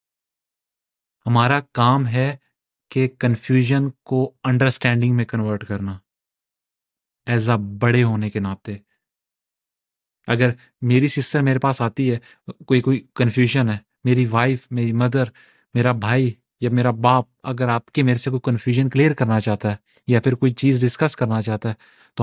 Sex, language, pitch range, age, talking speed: male, Urdu, 110-130 Hz, 30-49, 150 wpm